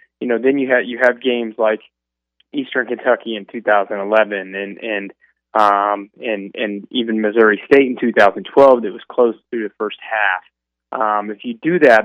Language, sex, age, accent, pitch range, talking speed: English, male, 20-39, American, 105-120 Hz, 175 wpm